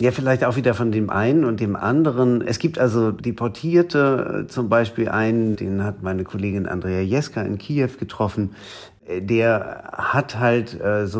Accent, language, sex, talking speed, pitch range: German, German, male, 165 wpm, 95-115 Hz